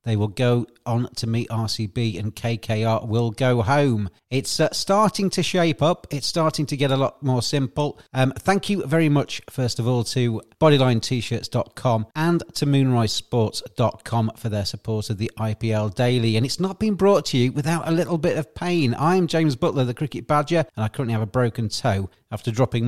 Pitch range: 115-150 Hz